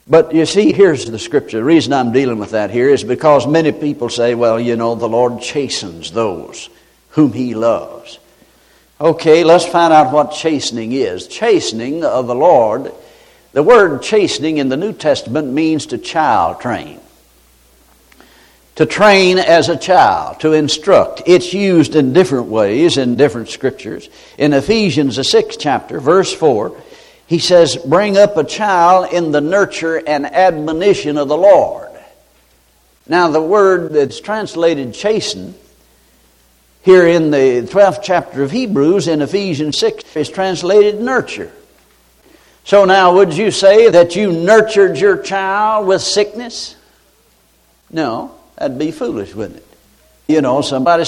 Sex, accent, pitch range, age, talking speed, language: male, American, 135-200 Hz, 60-79, 145 wpm, English